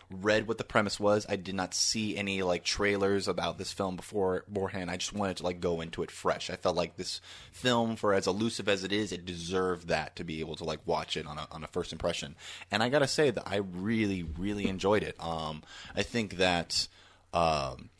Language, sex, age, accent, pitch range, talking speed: English, male, 20-39, American, 85-100 Hz, 230 wpm